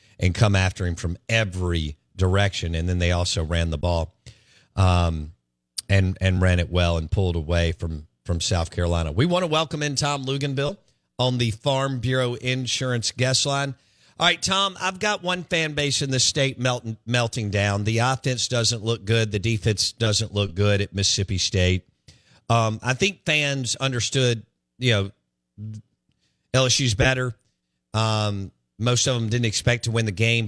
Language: English